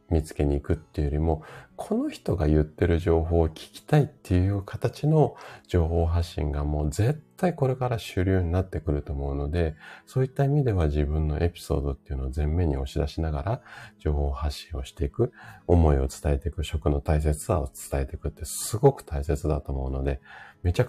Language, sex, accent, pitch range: Japanese, male, native, 75-95 Hz